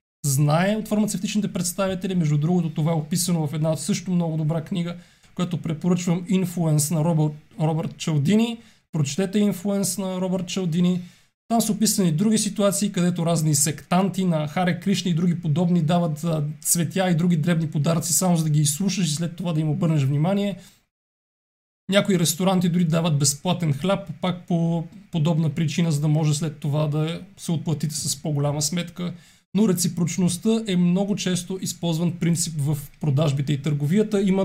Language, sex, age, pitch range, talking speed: Bulgarian, male, 30-49, 160-185 Hz, 160 wpm